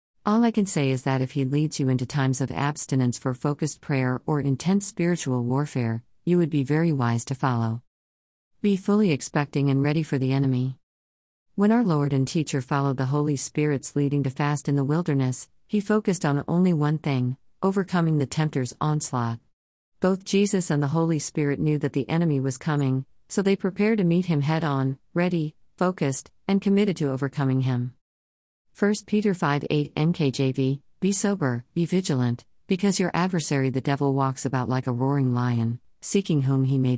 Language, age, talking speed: English, 40-59, 180 wpm